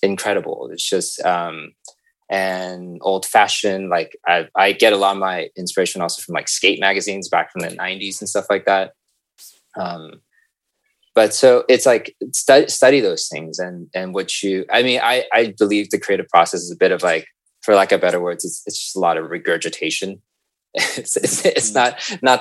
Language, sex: English, male